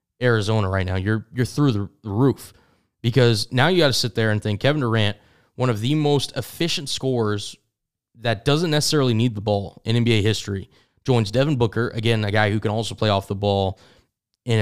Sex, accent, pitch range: male, American, 110-130 Hz